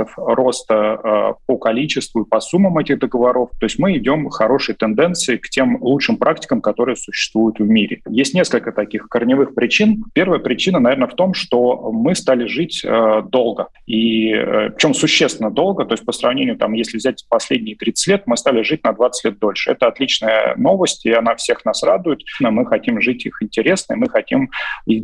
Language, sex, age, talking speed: Russian, male, 30-49, 190 wpm